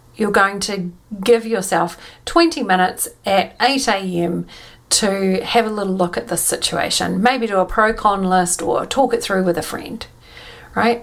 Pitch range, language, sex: 190-250 Hz, English, female